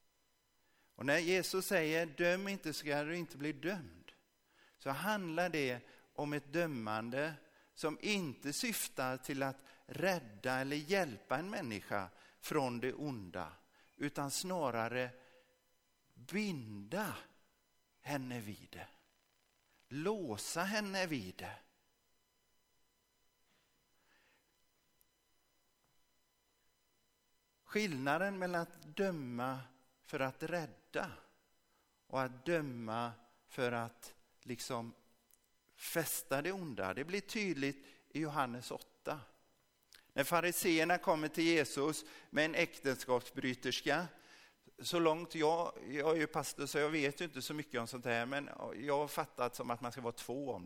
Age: 50-69